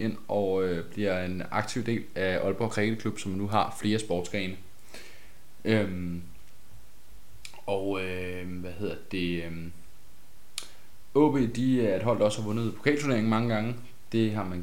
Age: 20-39